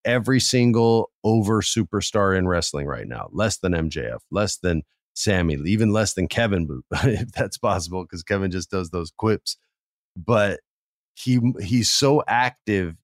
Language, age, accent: English, 40-59, American